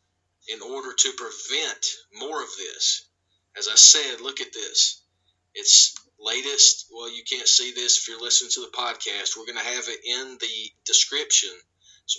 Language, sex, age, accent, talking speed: English, male, 40-59, American, 170 wpm